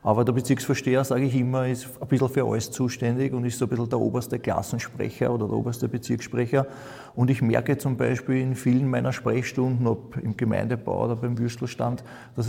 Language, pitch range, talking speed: German, 115-130 Hz, 190 wpm